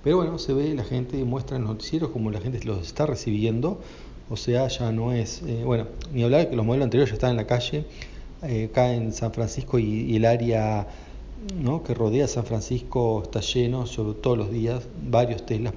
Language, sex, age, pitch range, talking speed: Spanish, male, 40-59, 110-130 Hz, 215 wpm